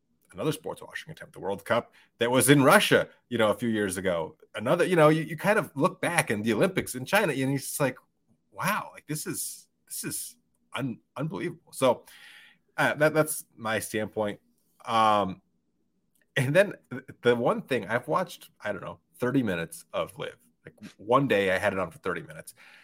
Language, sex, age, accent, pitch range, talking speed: English, male, 30-49, American, 100-140 Hz, 190 wpm